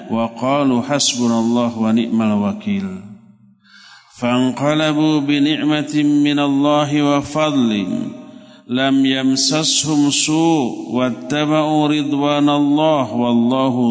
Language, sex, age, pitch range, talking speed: Indonesian, male, 50-69, 125-180 Hz, 90 wpm